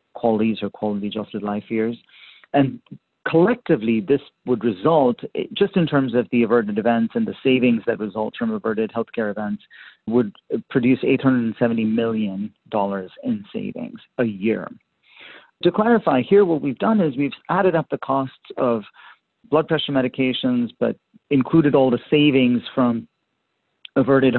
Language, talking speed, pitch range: English, 145 wpm, 120-160 Hz